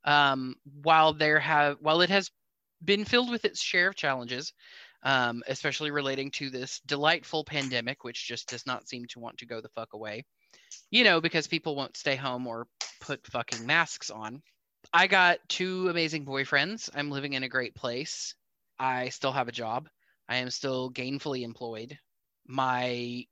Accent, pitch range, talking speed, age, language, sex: American, 125-155 Hz, 170 wpm, 20-39, English, male